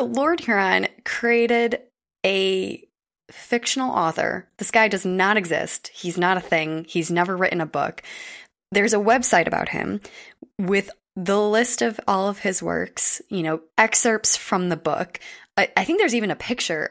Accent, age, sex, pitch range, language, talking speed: American, 20-39, female, 165-220 Hz, English, 165 wpm